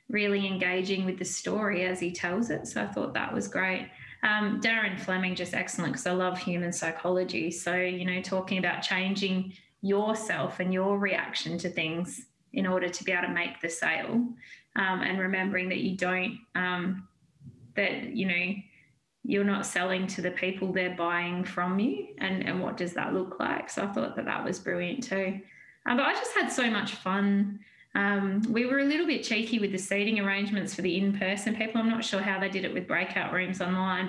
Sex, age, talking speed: female, 20-39, 200 wpm